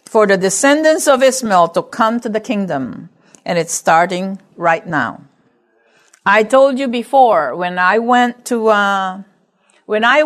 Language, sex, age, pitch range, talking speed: English, female, 50-69, 185-260 Hz, 150 wpm